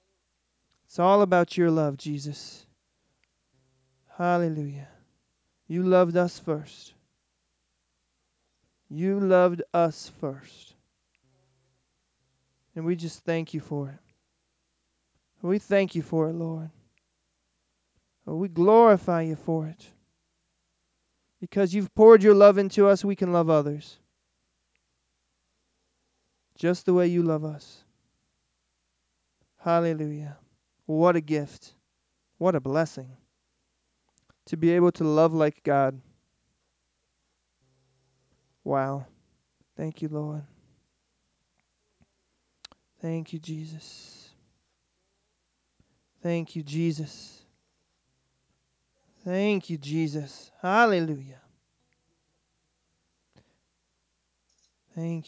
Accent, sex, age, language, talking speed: American, male, 20-39, English, 85 wpm